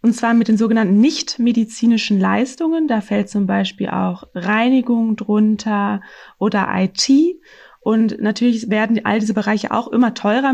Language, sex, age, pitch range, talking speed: German, female, 20-39, 210-245 Hz, 140 wpm